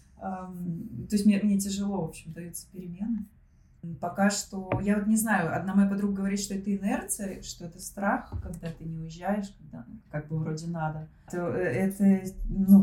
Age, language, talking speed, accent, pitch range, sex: 20-39, Russian, 185 wpm, native, 170-205 Hz, female